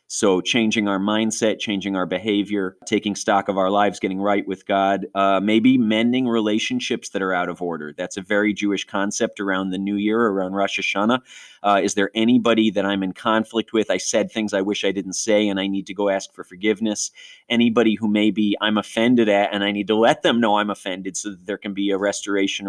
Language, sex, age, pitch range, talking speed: English, male, 30-49, 100-110 Hz, 220 wpm